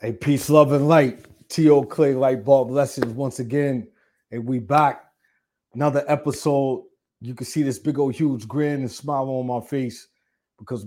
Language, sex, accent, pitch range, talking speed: English, male, American, 120-140 Hz, 170 wpm